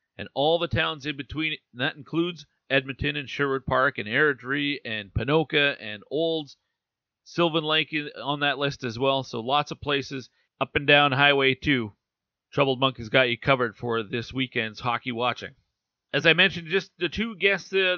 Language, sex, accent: English, male, American